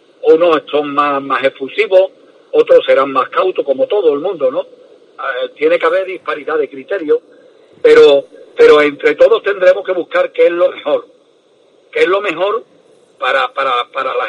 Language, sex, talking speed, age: Spanish, male, 165 wpm, 50-69